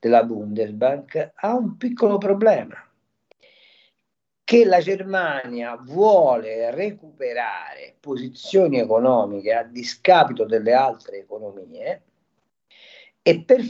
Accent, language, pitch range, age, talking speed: native, Italian, 120-200 Hz, 40-59, 90 wpm